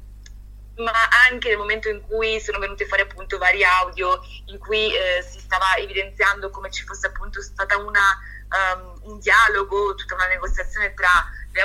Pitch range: 190-225 Hz